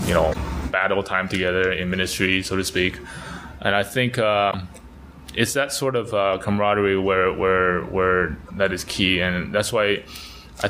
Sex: male